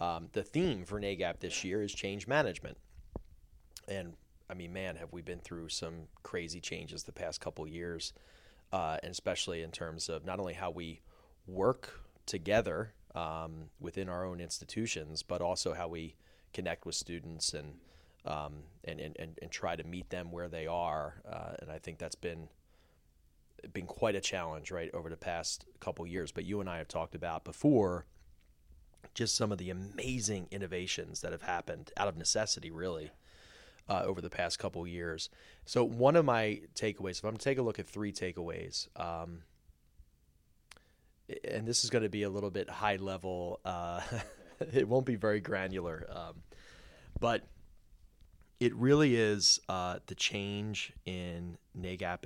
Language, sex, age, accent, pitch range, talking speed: English, male, 30-49, American, 80-100 Hz, 170 wpm